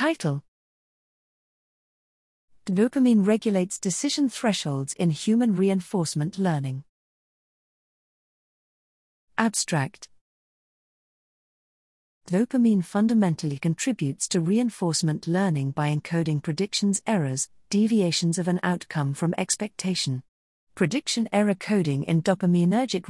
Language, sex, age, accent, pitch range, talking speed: English, female, 40-59, British, 155-210 Hz, 80 wpm